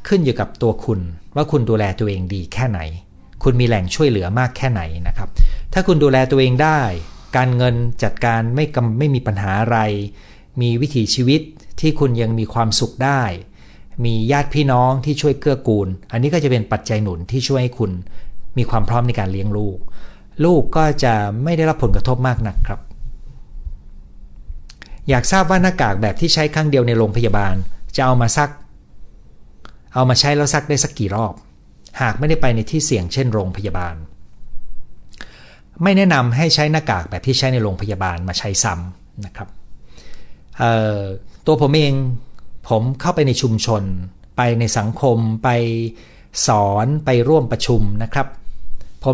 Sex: male